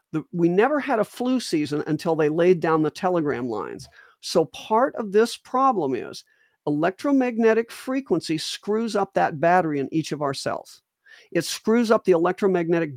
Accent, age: American, 50-69